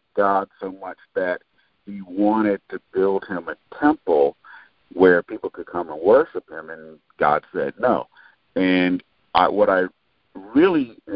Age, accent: 50-69, American